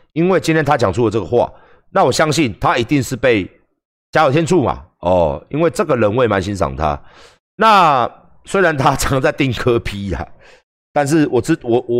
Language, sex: Chinese, male